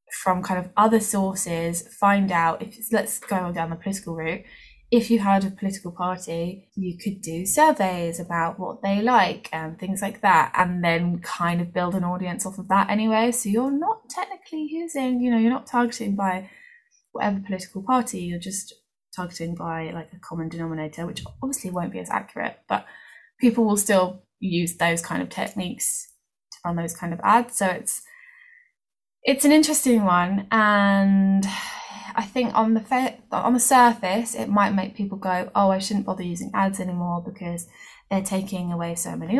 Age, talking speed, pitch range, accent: 10-29, 180 wpm, 175-230 Hz, British